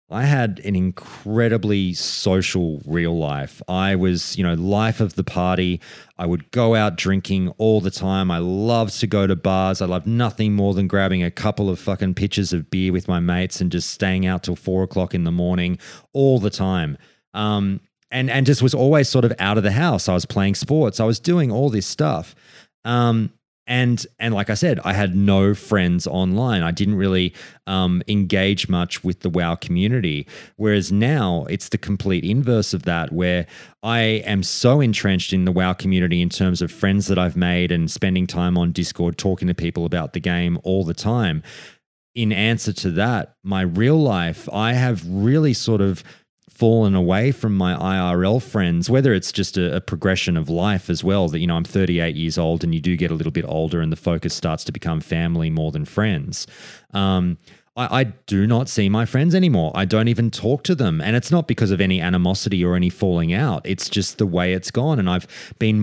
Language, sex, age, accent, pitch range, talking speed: English, male, 30-49, Australian, 90-110 Hz, 205 wpm